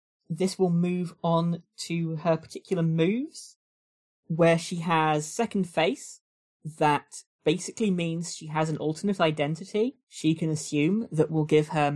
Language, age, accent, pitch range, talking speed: English, 20-39, British, 135-175 Hz, 140 wpm